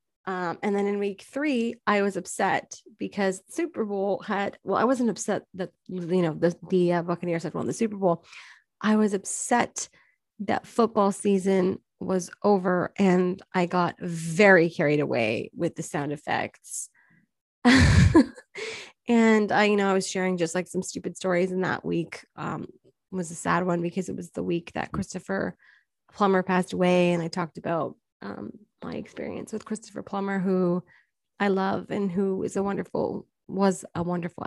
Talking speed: 170 wpm